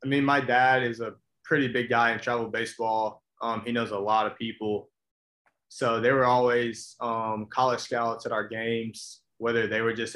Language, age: English, 20-39